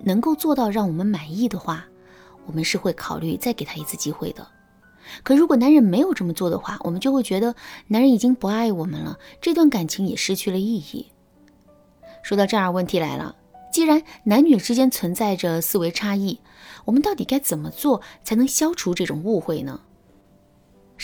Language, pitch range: Chinese, 170-240 Hz